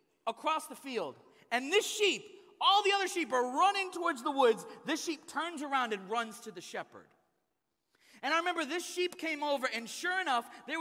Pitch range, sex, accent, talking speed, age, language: 255-335 Hz, male, American, 195 wpm, 30-49, English